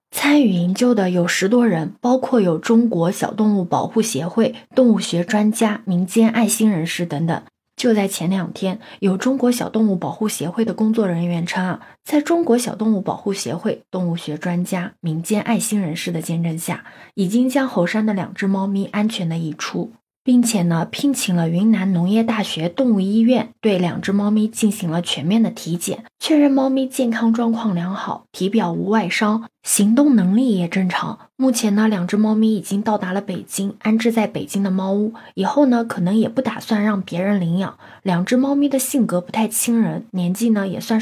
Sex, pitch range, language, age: female, 185-230 Hz, Chinese, 20-39